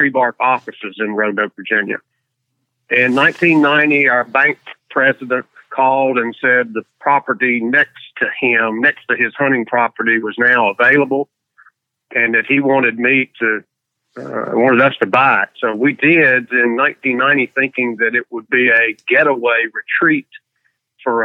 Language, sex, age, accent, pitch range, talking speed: English, male, 50-69, American, 120-140 Hz, 145 wpm